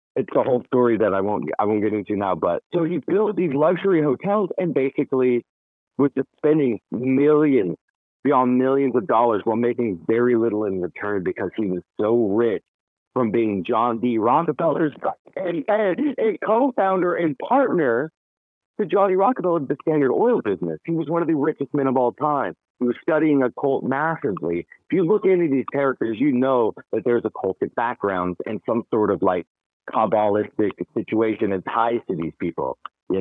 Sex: male